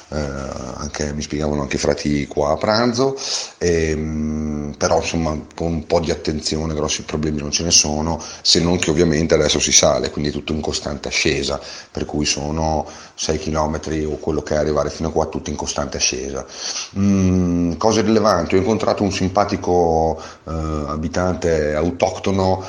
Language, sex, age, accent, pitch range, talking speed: Italian, male, 40-59, native, 75-95 Hz, 170 wpm